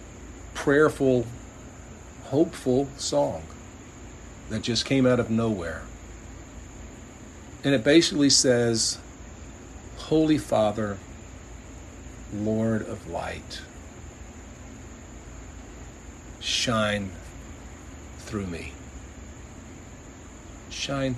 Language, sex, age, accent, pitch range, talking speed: English, male, 50-69, American, 90-120 Hz, 60 wpm